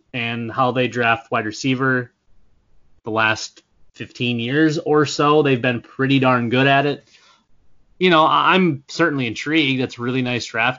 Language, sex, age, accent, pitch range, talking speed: English, male, 20-39, American, 115-135 Hz, 155 wpm